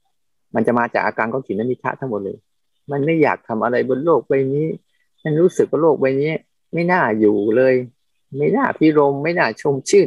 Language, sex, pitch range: Thai, male, 125-155 Hz